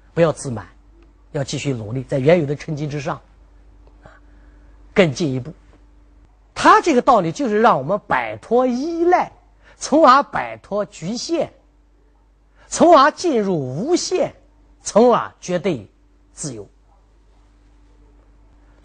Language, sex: Chinese, male